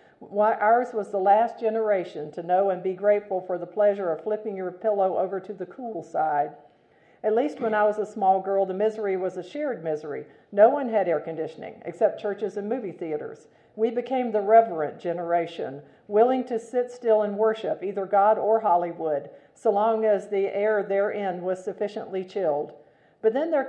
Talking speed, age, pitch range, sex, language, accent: 185 wpm, 50-69, 185-220 Hz, female, English, American